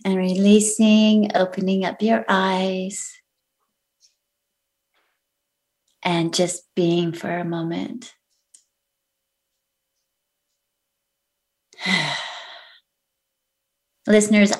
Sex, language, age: female, English, 30-49